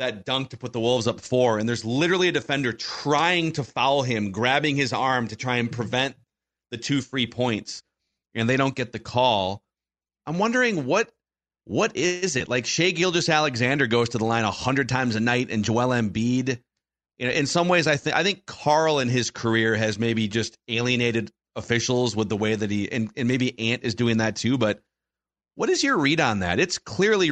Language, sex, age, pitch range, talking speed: English, male, 30-49, 110-145 Hz, 210 wpm